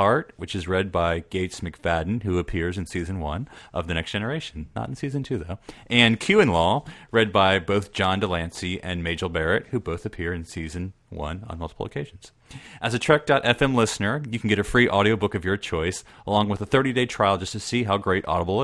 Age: 30-49